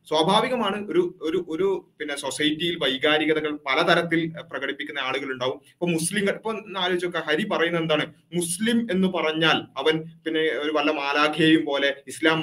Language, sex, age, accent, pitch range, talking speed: Malayalam, male, 30-49, native, 155-190 Hz, 135 wpm